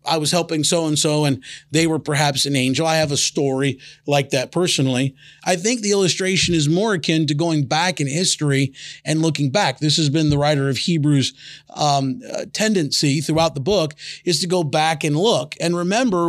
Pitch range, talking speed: 150-180 Hz, 195 wpm